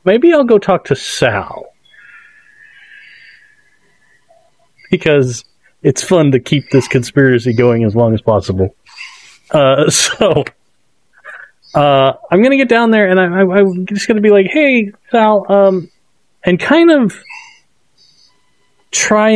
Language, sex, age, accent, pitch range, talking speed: English, male, 30-49, American, 130-205 Hz, 135 wpm